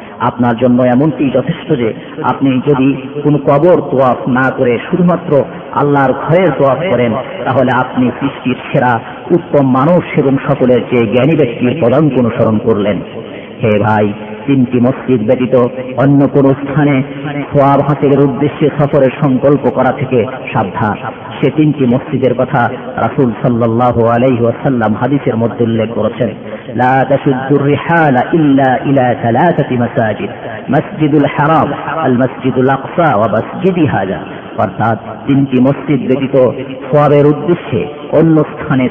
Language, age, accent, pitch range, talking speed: Bengali, 50-69, native, 120-140 Hz, 80 wpm